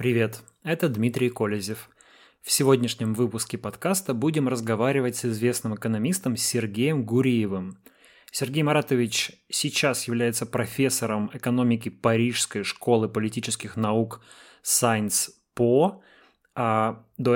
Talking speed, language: 100 wpm, Russian